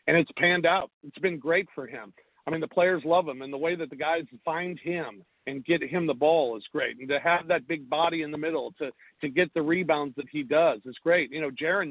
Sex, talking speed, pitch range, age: male, 260 wpm, 150-185 Hz, 50-69